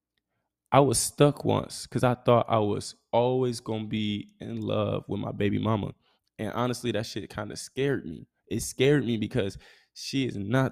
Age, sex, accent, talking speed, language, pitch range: 20-39, male, American, 185 wpm, English, 100-120 Hz